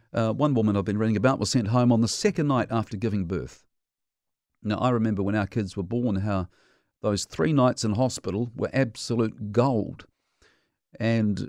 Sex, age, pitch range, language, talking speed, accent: male, 50-69, 100-125 Hz, English, 185 wpm, Australian